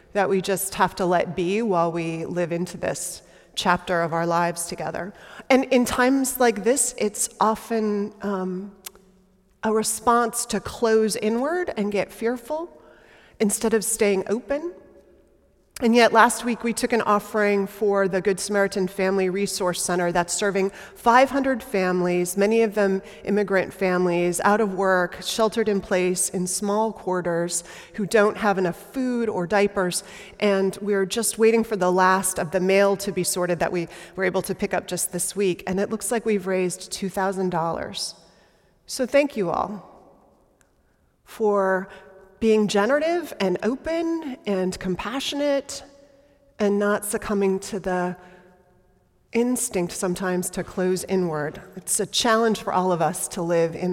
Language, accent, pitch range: English, American, 185-225 Hz